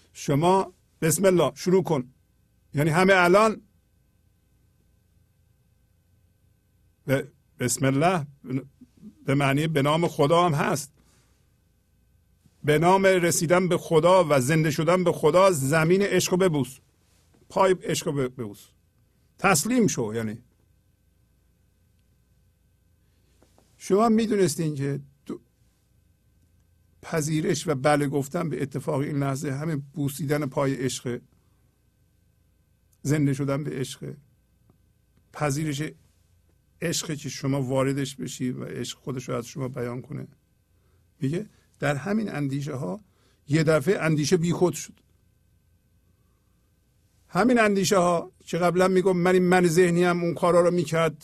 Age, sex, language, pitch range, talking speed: 50-69, male, English, 105-175 Hz, 110 wpm